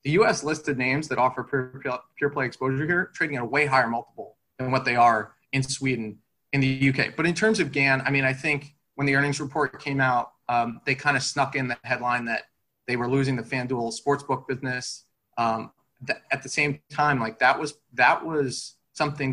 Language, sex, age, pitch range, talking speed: English, male, 30-49, 125-145 Hz, 215 wpm